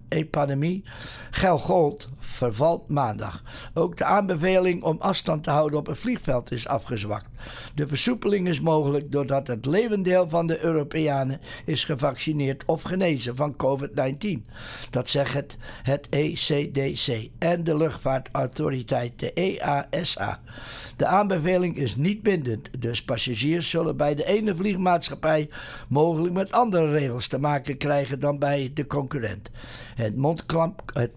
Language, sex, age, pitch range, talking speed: English, male, 60-79, 130-175 Hz, 130 wpm